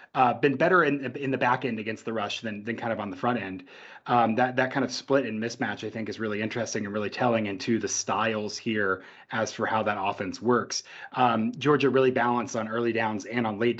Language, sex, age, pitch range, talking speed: English, male, 30-49, 110-135 Hz, 240 wpm